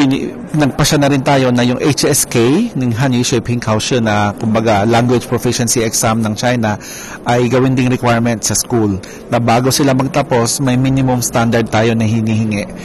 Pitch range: 115-140 Hz